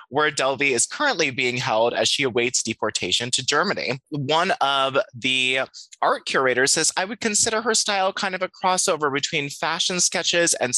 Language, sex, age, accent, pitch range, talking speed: English, male, 20-39, American, 135-185 Hz, 175 wpm